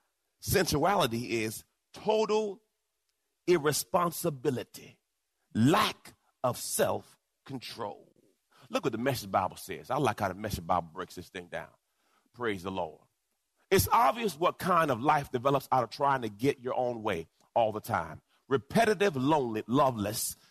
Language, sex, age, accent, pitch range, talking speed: English, male, 40-59, American, 140-210 Hz, 140 wpm